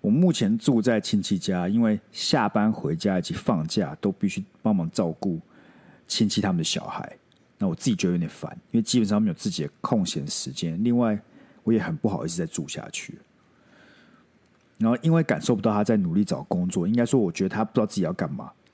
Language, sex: Chinese, male